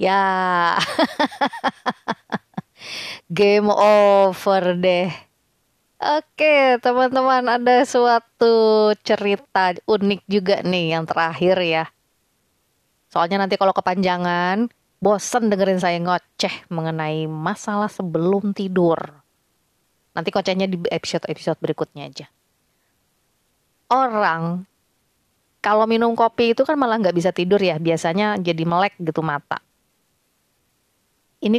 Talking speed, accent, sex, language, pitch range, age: 100 wpm, native, female, Indonesian, 175-235 Hz, 20-39